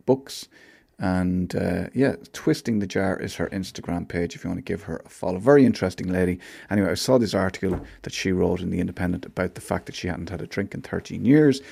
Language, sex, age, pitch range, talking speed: English, male, 30-49, 90-105 Hz, 230 wpm